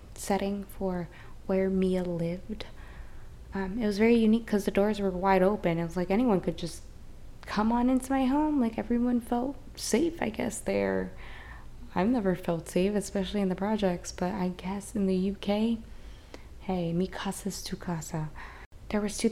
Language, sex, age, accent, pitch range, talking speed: English, female, 20-39, American, 180-210 Hz, 175 wpm